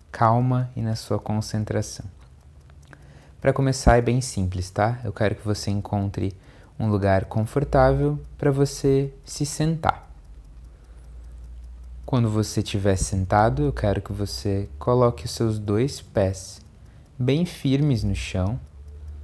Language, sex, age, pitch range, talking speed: Portuguese, male, 20-39, 90-120 Hz, 125 wpm